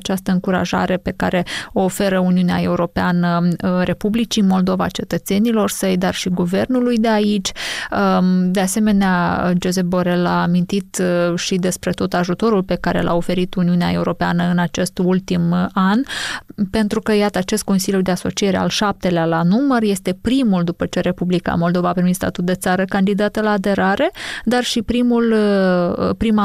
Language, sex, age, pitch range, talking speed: Romanian, female, 20-39, 180-205 Hz, 145 wpm